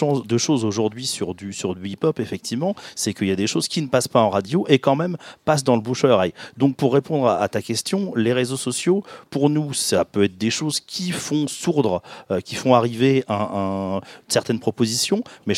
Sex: male